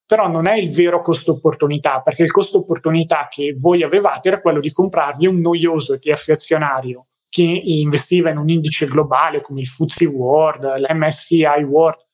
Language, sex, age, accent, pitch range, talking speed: Italian, male, 20-39, native, 150-175 Hz, 170 wpm